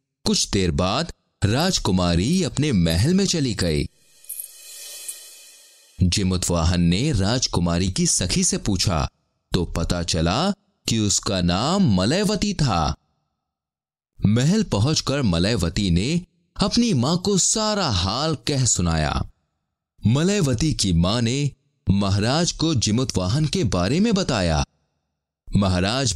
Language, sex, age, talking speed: Hindi, male, 30-49, 110 wpm